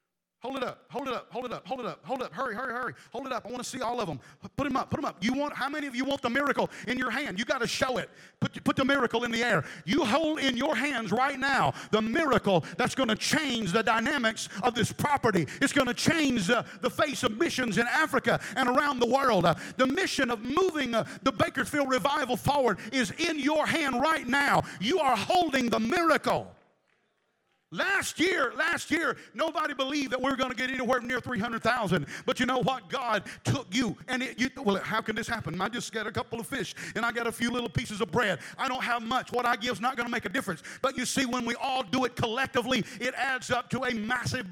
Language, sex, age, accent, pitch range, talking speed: English, male, 50-69, American, 230-270 Hz, 250 wpm